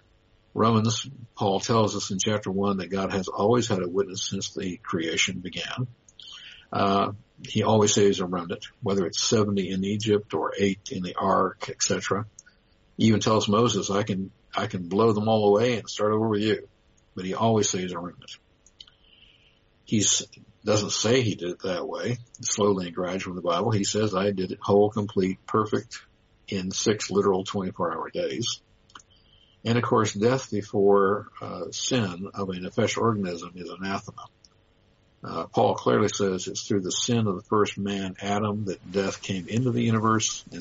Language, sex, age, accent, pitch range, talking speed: English, male, 60-79, American, 95-110 Hz, 180 wpm